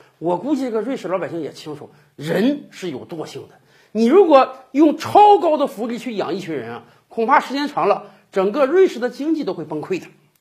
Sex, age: male, 50-69